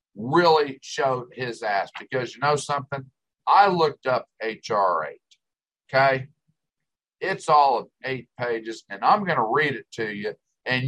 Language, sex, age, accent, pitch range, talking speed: English, male, 50-69, American, 120-150 Hz, 150 wpm